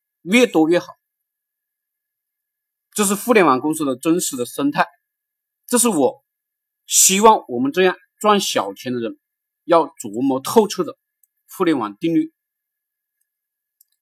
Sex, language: male, Chinese